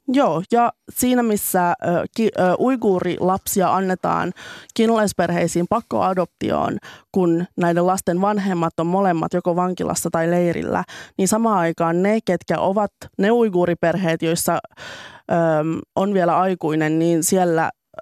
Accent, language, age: native, Finnish, 20-39